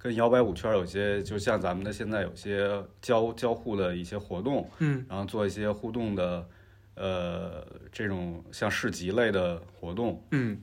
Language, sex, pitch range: Chinese, male, 90-115 Hz